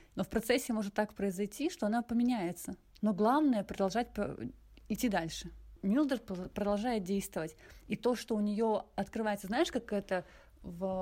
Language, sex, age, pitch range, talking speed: Russian, female, 30-49, 185-230 Hz, 150 wpm